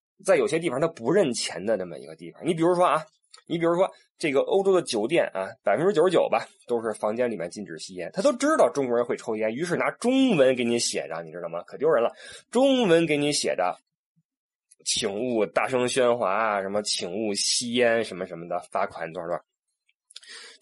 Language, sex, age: Chinese, male, 20-39